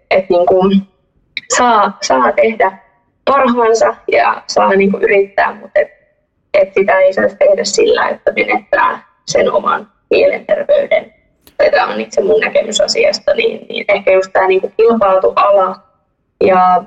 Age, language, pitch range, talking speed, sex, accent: 20-39, Finnish, 190-265 Hz, 135 wpm, female, native